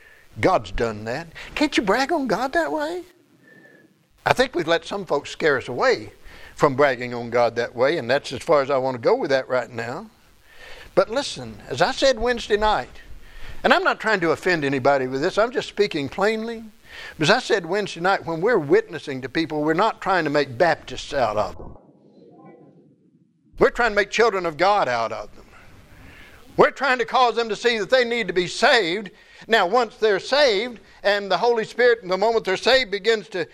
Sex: male